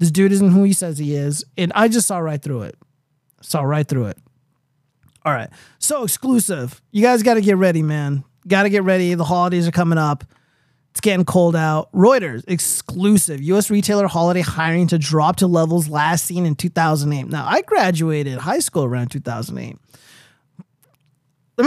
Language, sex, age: English, male, 30-49